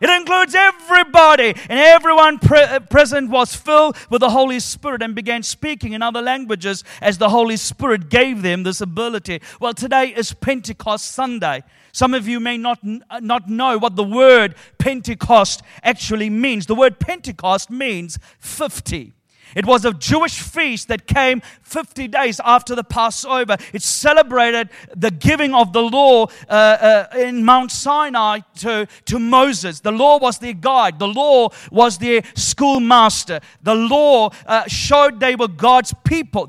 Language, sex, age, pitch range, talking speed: English, male, 40-59, 215-265 Hz, 155 wpm